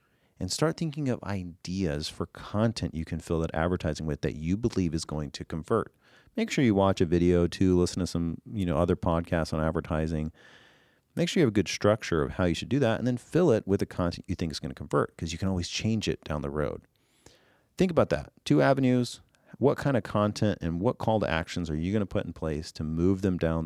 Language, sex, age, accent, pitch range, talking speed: English, male, 40-59, American, 80-110 Hz, 245 wpm